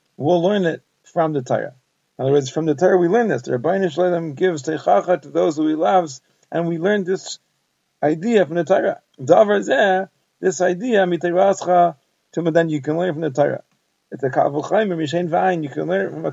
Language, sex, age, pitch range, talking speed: English, male, 30-49, 150-180 Hz, 195 wpm